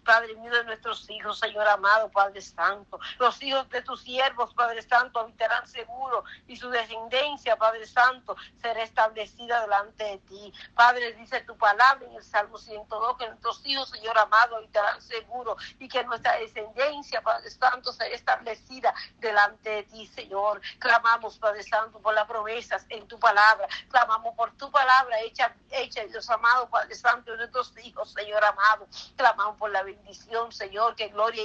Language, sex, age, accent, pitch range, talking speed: Spanish, female, 50-69, American, 210-235 Hz, 165 wpm